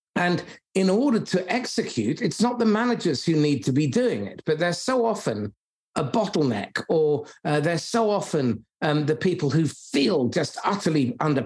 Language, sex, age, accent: English, male, 50-69, British